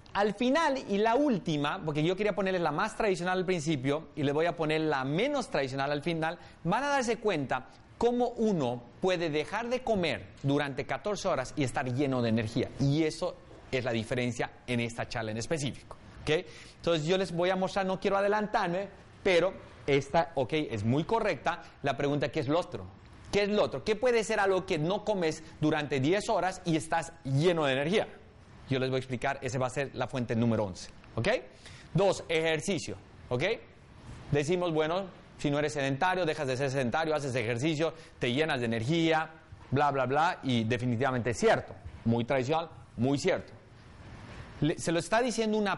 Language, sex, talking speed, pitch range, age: Spanish, male, 185 wpm, 125-180 Hz, 30-49